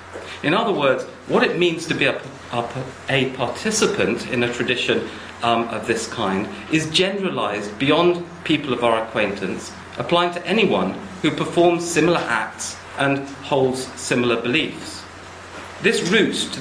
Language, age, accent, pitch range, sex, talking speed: English, 40-59, British, 120-160 Hz, male, 145 wpm